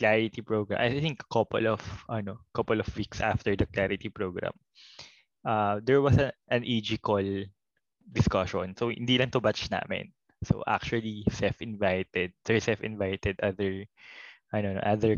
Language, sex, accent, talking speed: Filipino, male, native, 160 wpm